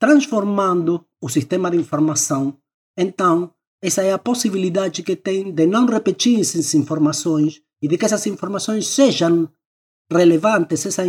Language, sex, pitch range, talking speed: Portuguese, male, 160-215 Hz, 135 wpm